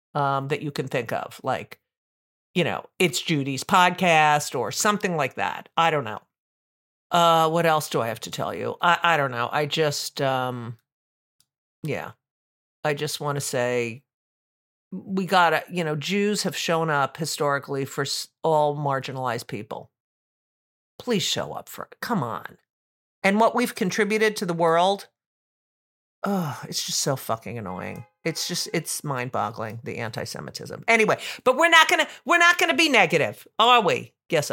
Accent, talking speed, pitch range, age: American, 165 wpm, 135-190 Hz, 50-69